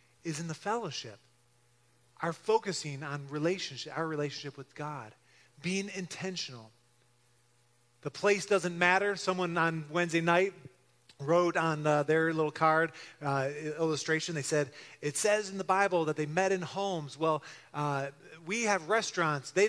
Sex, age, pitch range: male, 30-49, 120-165 Hz